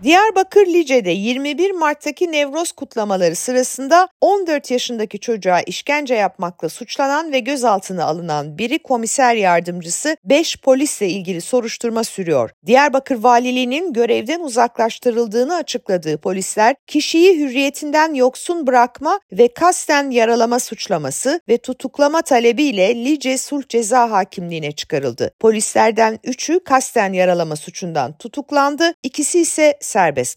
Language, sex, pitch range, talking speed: Turkish, female, 220-295 Hz, 110 wpm